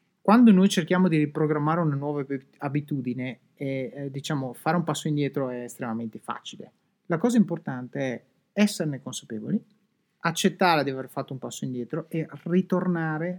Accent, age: native, 30-49